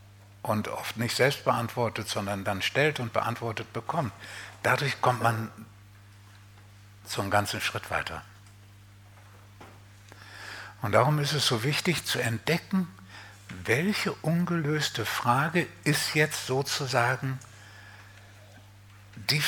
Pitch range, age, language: 100-130 Hz, 60-79, German